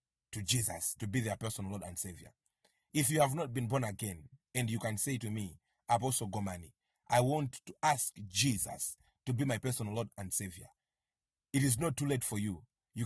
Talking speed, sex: 200 wpm, male